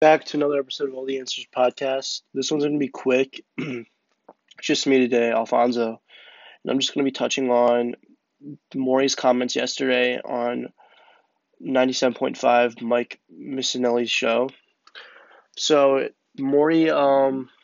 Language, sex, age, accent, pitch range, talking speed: English, male, 20-39, American, 125-140 Hz, 135 wpm